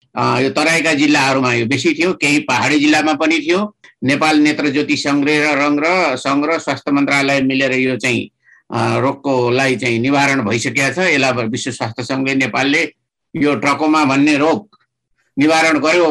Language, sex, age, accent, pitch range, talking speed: English, male, 60-79, Indian, 140-180 Hz, 150 wpm